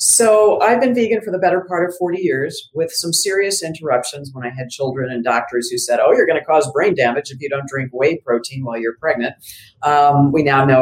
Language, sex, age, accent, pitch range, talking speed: English, female, 50-69, American, 125-170 Hz, 240 wpm